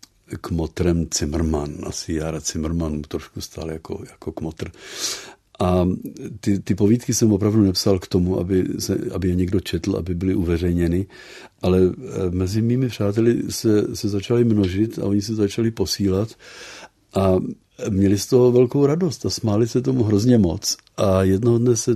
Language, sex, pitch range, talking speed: Czech, male, 90-110 Hz, 160 wpm